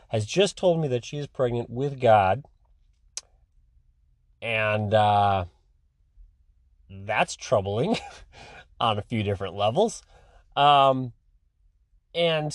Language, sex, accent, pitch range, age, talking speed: English, male, American, 105-140 Hz, 30-49, 100 wpm